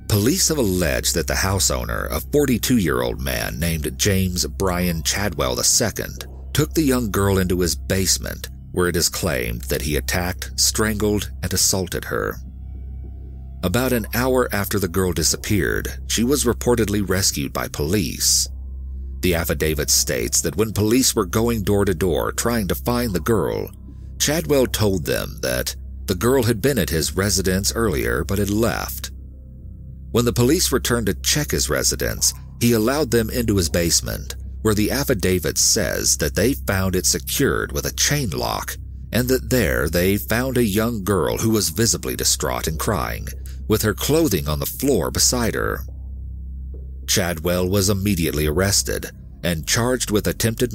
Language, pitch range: English, 65-105 Hz